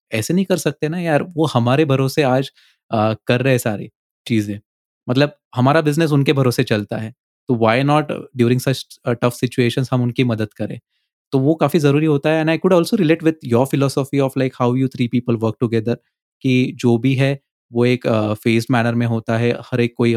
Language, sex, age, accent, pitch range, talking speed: Hindi, male, 20-39, native, 115-145 Hz, 165 wpm